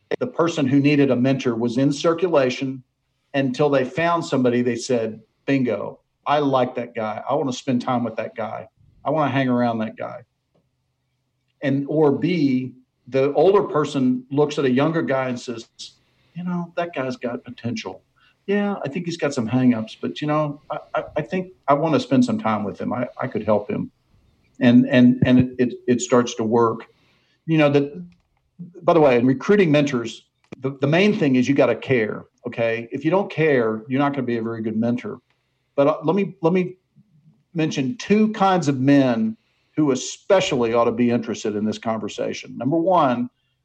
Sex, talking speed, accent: male, 195 wpm, American